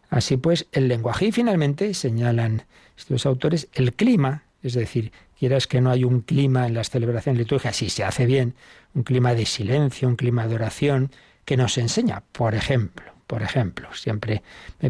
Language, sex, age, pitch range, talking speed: Spanish, male, 60-79, 115-140 Hz, 175 wpm